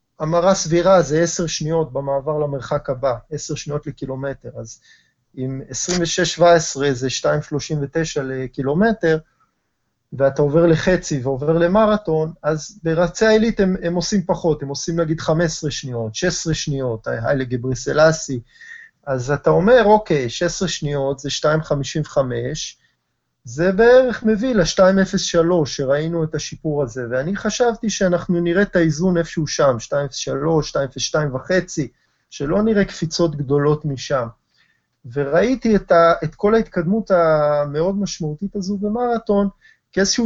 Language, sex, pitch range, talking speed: Hebrew, male, 140-185 Hz, 120 wpm